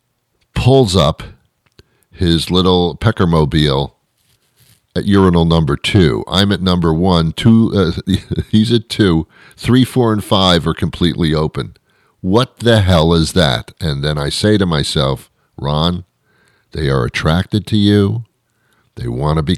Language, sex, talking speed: English, male, 145 wpm